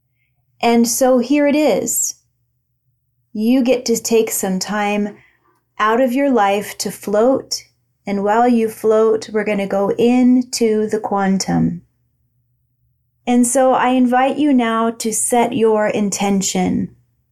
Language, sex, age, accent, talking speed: English, female, 30-49, American, 130 wpm